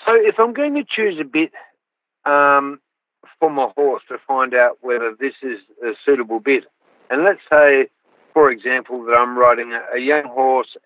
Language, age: English, 60-79